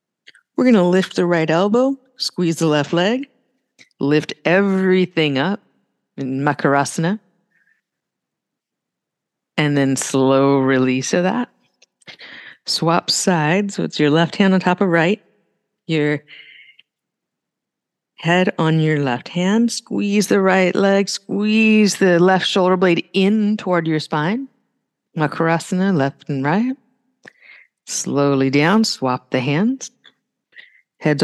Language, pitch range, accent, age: English, 155-220 Hz, American, 50-69